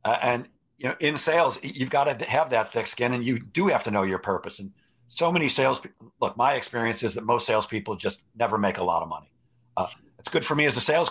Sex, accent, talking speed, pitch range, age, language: male, American, 255 wpm, 115-145 Hz, 40-59, English